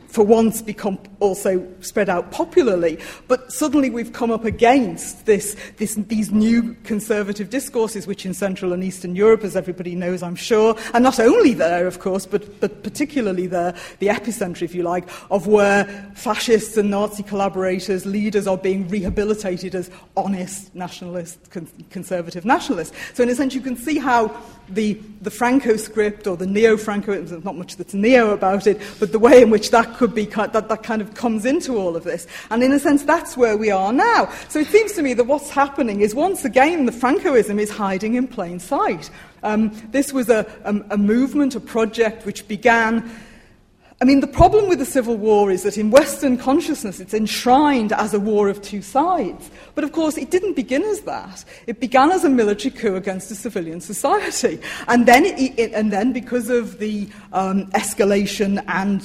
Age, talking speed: 40-59, 195 wpm